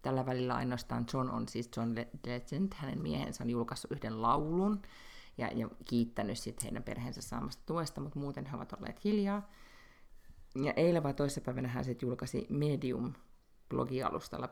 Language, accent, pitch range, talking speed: Finnish, native, 120-145 Hz, 150 wpm